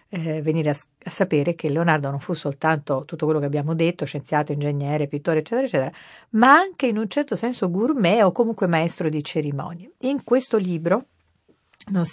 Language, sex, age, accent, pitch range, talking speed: Italian, female, 50-69, native, 155-225 Hz, 180 wpm